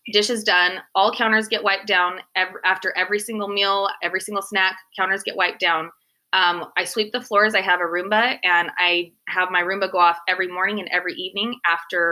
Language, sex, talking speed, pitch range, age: English, female, 210 wpm, 170-195 Hz, 20-39